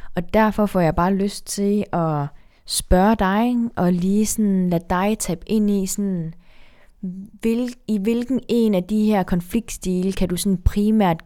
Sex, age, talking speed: female, 20-39, 165 wpm